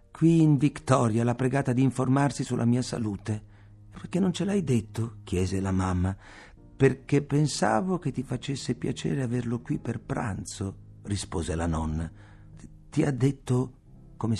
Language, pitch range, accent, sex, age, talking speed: Italian, 95-135 Hz, native, male, 50-69, 145 wpm